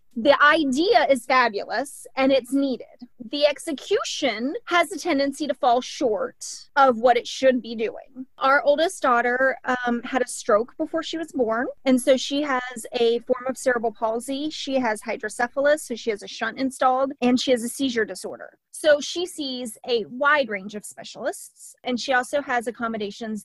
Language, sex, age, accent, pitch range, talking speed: English, female, 30-49, American, 225-275 Hz, 175 wpm